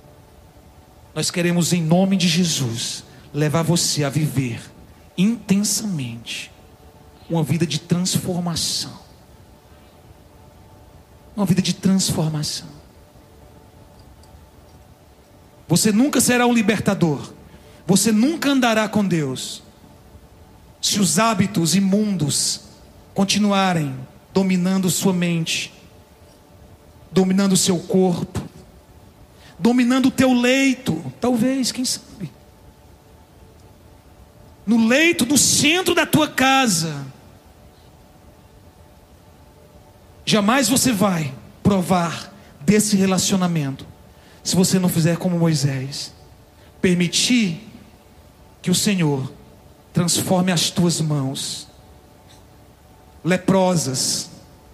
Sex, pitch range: male, 130-205 Hz